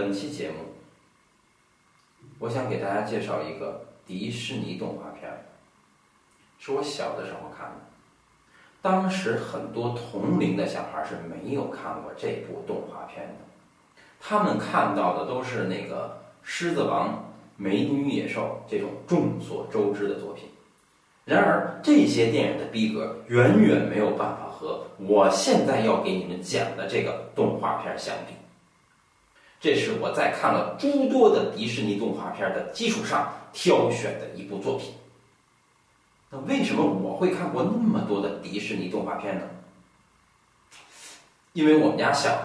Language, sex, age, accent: Chinese, male, 40-59, native